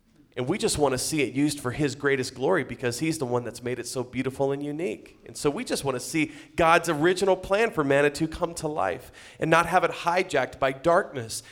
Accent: American